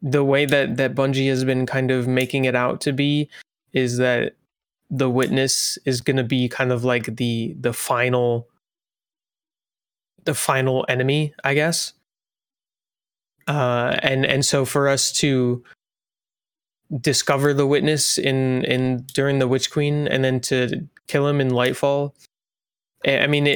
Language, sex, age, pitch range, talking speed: English, male, 20-39, 125-145 Hz, 150 wpm